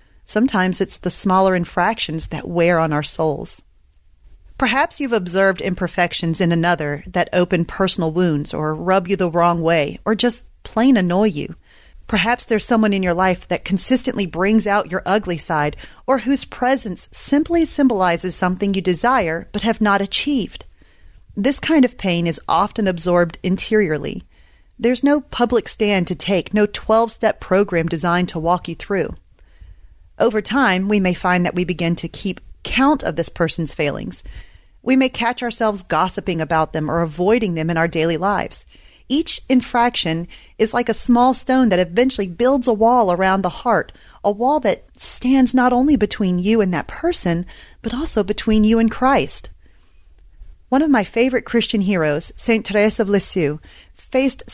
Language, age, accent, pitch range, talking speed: English, 30-49, American, 170-230 Hz, 165 wpm